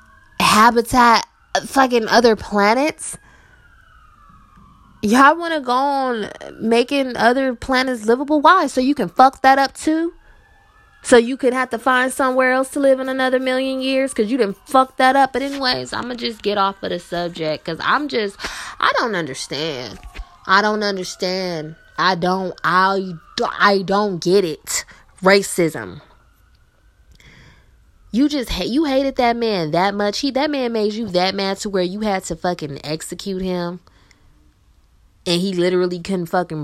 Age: 20-39